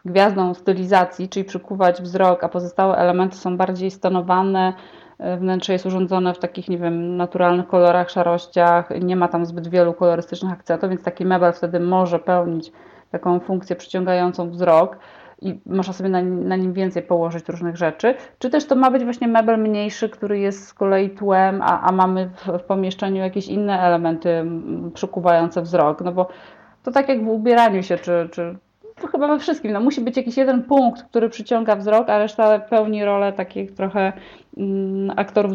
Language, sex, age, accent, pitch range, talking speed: Polish, female, 30-49, native, 180-225 Hz, 175 wpm